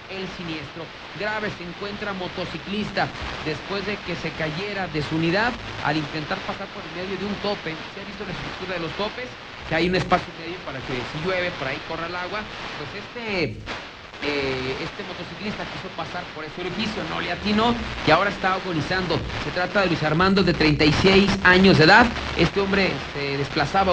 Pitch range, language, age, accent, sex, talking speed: 160-200 Hz, Spanish, 40-59, Mexican, male, 190 wpm